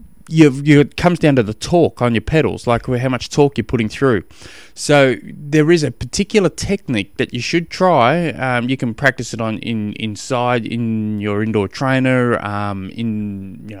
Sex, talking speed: male, 185 wpm